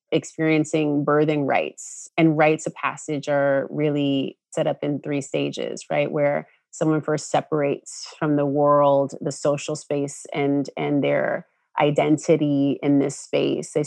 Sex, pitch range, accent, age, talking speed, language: female, 145-160 Hz, American, 30-49, 145 wpm, English